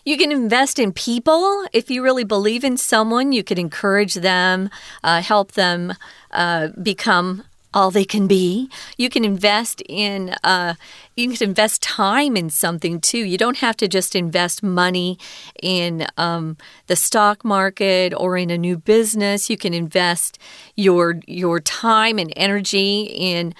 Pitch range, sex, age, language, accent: 180-235 Hz, female, 40-59, Chinese, American